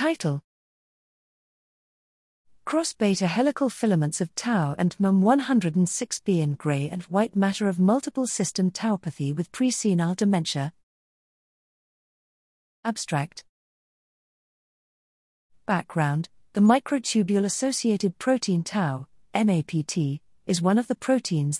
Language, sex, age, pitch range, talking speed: English, female, 40-59, 160-225 Hz, 90 wpm